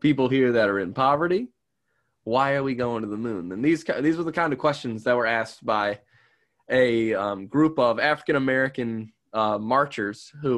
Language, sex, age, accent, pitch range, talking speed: English, male, 20-39, American, 110-135 Hz, 195 wpm